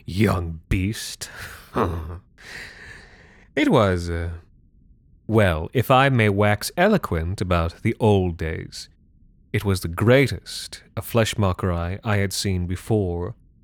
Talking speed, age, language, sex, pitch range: 120 wpm, 30-49, English, male, 90-125 Hz